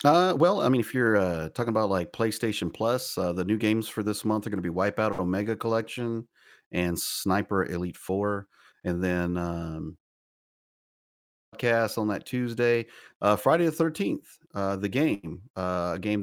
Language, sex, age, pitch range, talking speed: English, male, 40-59, 85-110 Hz, 175 wpm